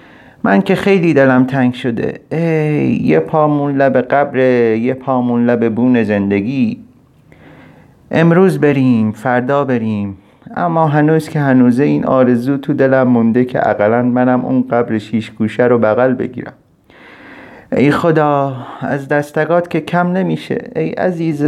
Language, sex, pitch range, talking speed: Persian, male, 100-135 Hz, 130 wpm